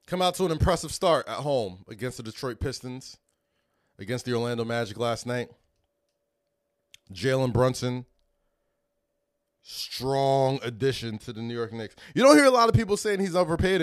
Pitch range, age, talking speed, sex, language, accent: 115-170 Hz, 20-39, 160 wpm, male, English, American